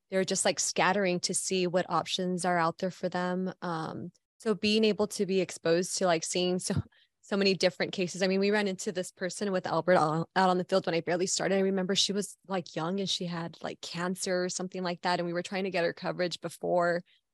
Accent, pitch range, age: American, 175-195 Hz, 20-39